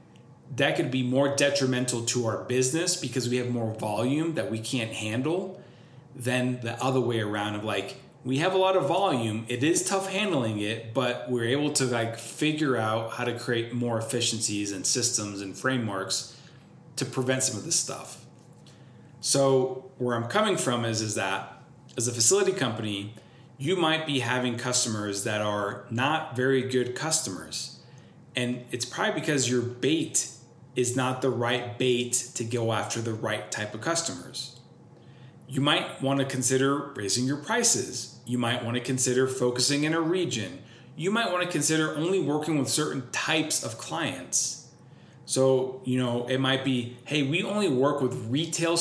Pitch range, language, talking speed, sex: 115-140 Hz, English, 170 wpm, male